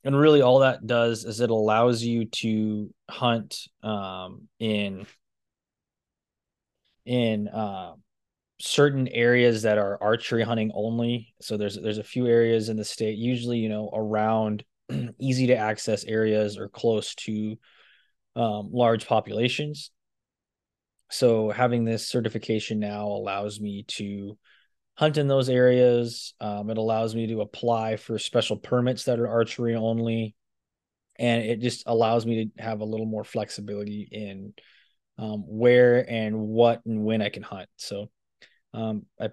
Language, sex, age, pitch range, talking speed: English, male, 20-39, 105-115 Hz, 145 wpm